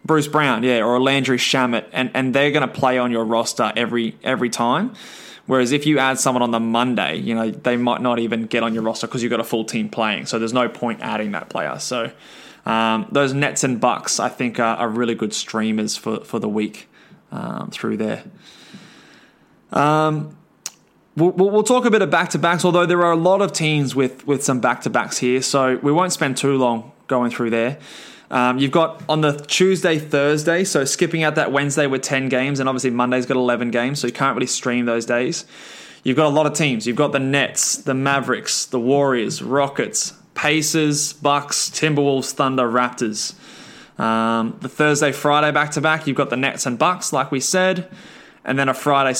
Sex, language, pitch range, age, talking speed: male, English, 120-150 Hz, 20-39, 200 wpm